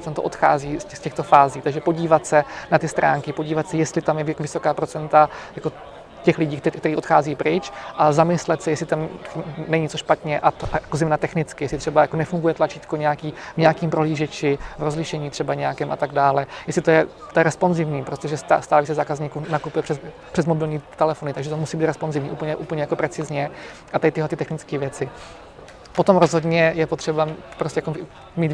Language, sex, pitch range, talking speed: Czech, male, 150-165 Hz, 180 wpm